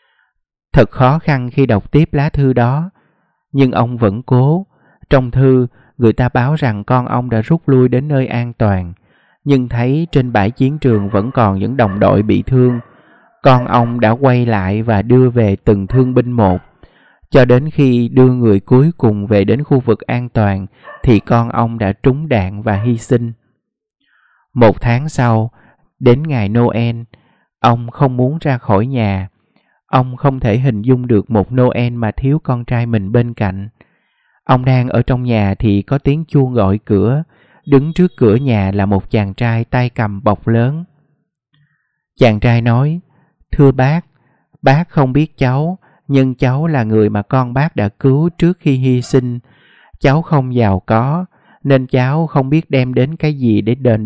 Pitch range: 115-140 Hz